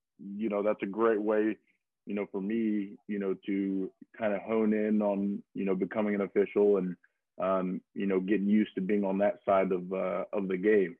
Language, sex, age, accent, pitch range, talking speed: English, male, 20-39, American, 100-110 Hz, 215 wpm